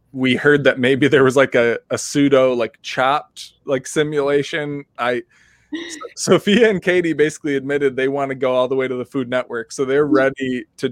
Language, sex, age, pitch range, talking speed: English, male, 20-39, 130-155 Hz, 200 wpm